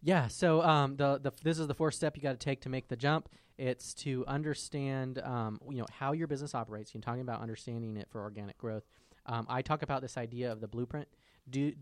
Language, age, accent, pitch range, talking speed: English, 20-39, American, 115-140 Hz, 240 wpm